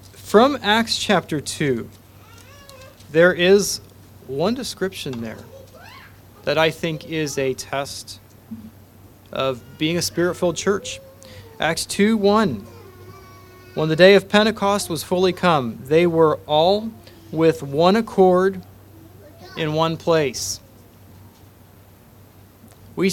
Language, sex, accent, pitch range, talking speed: English, male, American, 100-170 Hz, 105 wpm